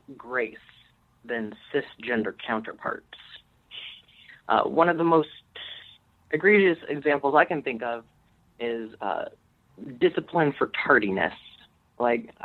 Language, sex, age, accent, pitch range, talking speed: English, male, 30-49, American, 120-150 Hz, 100 wpm